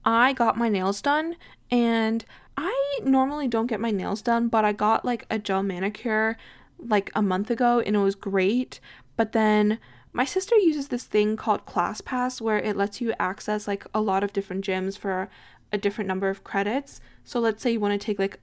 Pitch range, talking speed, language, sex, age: 200-245 Hz, 205 wpm, English, female, 10-29